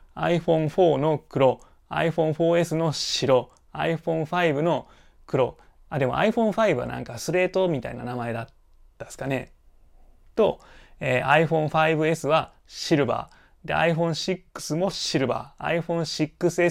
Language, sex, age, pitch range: Japanese, male, 20-39, 130-165 Hz